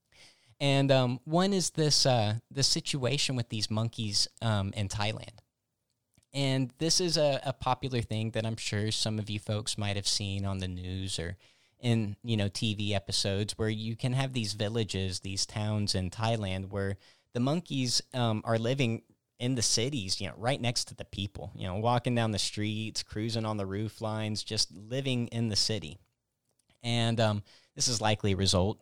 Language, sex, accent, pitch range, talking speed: English, male, American, 100-120 Hz, 185 wpm